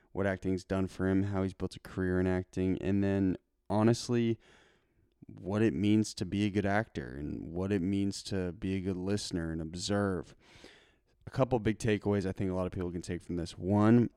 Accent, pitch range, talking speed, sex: American, 90-105 Hz, 210 wpm, male